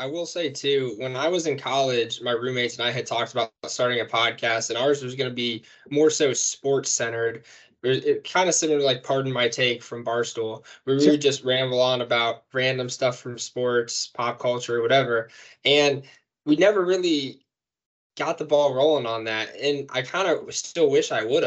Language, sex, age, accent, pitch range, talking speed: English, male, 20-39, American, 120-145 Hz, 200 wpm